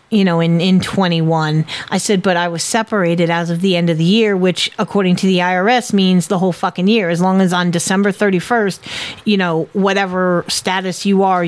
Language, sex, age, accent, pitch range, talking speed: English, female, 40-59, American, 185-235 Hz, 210 wpm